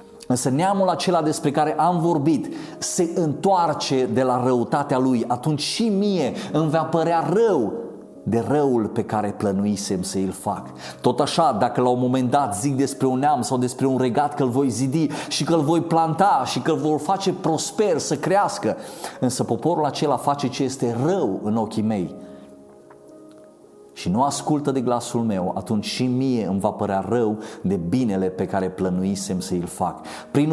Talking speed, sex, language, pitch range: 175 wpm, male, Romanian, 115-165 Hz